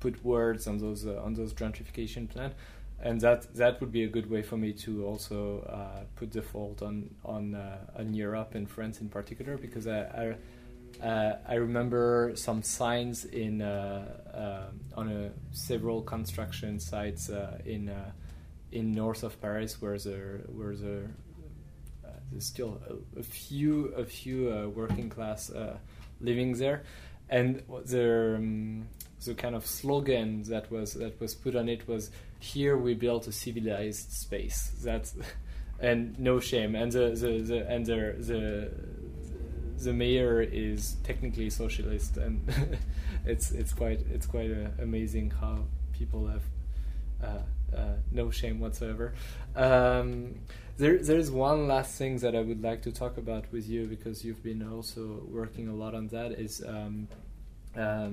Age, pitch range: 20-39, 100-120 Hz